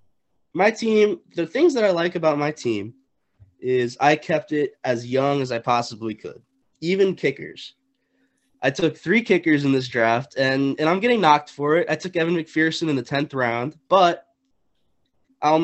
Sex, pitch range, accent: male, 125-165 Hz, American